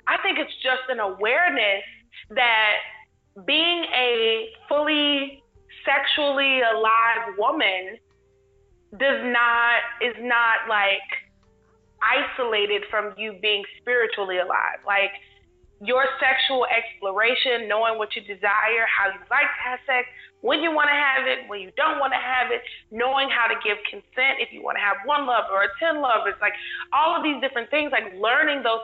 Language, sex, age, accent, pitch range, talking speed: English, female, 20-39, American, 220-275 Hz, 155 wpm